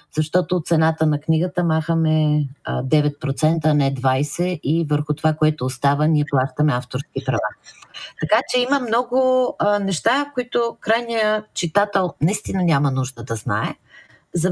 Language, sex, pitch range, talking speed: Bulgarian, female, 150-185 Hz, 130 wpm